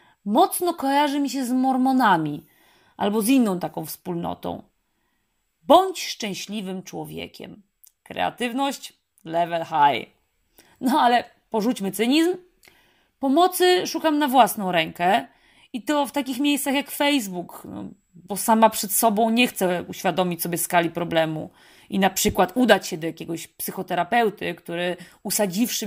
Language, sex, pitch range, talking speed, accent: Polish, female, 185-275 Hz, 125 wpm, native